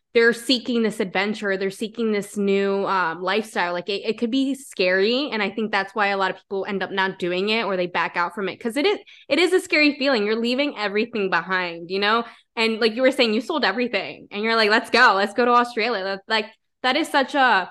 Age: 20-39